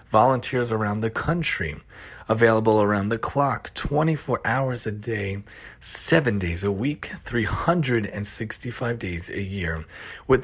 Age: 30-49